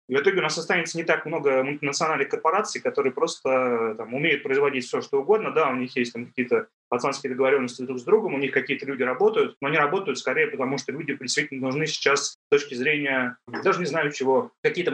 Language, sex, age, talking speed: Russian, male, 20-39, 215 wpm